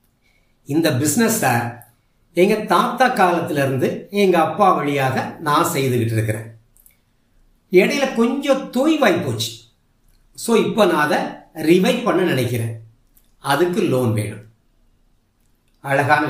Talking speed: 95 wpm